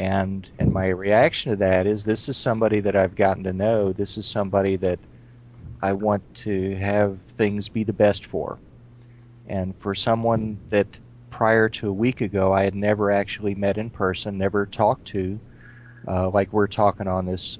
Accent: American